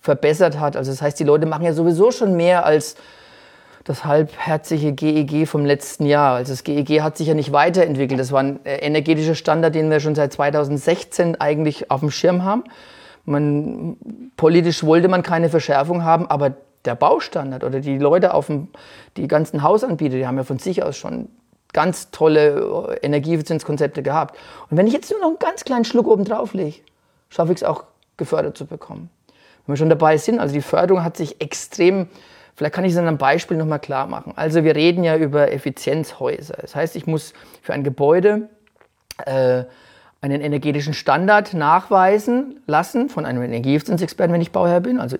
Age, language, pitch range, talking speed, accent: 30-49, German, 145-180 Hz, 180 wpm, German